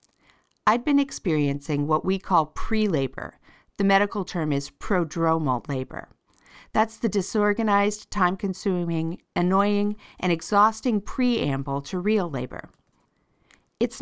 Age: 50-69